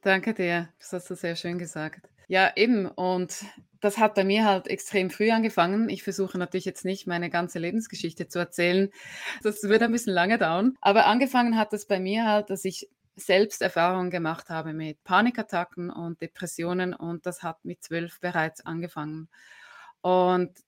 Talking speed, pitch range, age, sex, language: 175 wpm, 180-210 Hz, 20-39, female, German